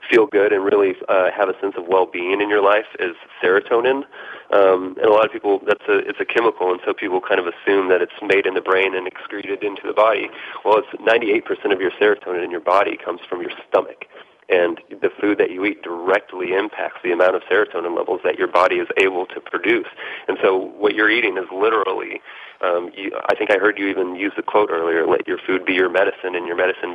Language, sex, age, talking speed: English, male, 30-49, 230 wpm